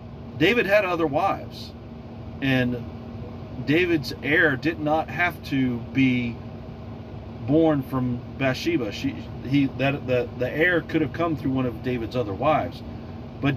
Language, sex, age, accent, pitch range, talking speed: English, male, 40-59, American, 115-145 Hz, 125 wpm